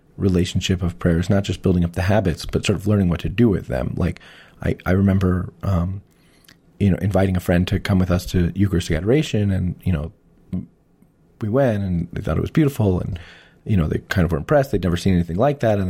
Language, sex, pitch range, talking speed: English, male, 90-105 Hz, 230 wpm